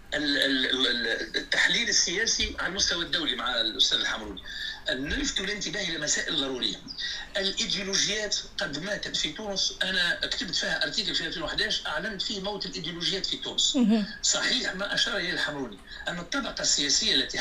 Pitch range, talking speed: 165-235 Hz, 135 wpm